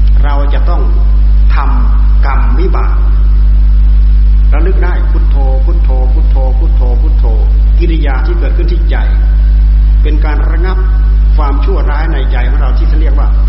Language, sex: Thai, male